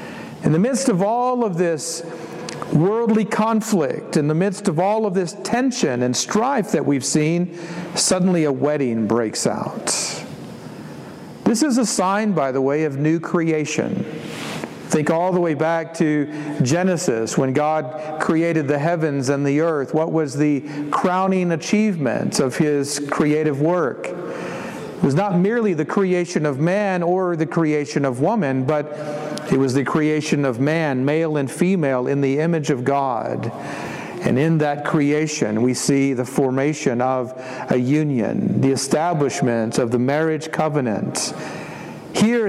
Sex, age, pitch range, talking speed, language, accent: male, 50-69, 145-190 Hz, 150 wpm, English, American